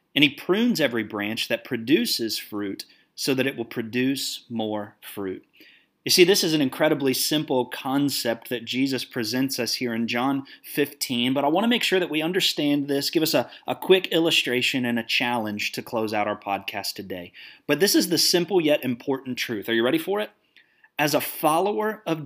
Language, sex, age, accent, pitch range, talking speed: English, male, 30-49, American, 125-185 Hz, 195 wpm